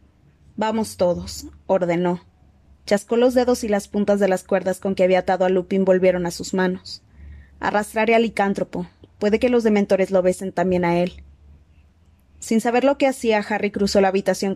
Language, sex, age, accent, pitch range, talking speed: Spanish, female, 20-39, Mexican, 180-210 Hz, 175 wpm